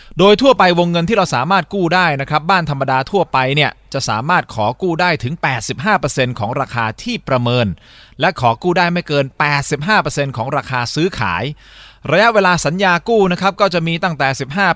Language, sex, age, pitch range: Thai, male, 20-39, 120-175 Hz